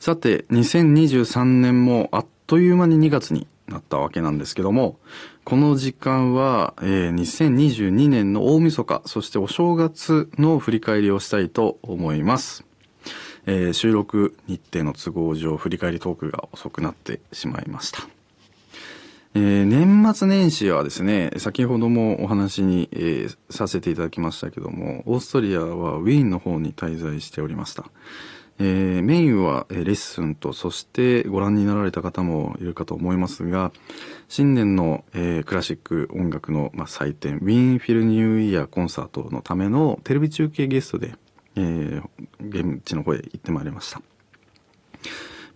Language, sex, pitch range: Japanese, male, 90-135 Hz